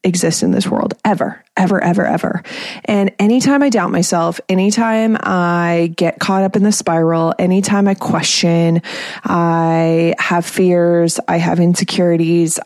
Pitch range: 175-215 Hz